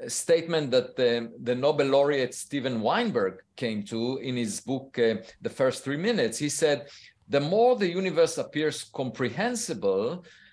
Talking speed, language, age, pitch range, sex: 150 wpm, English, 50-69, 120-175 Hz, male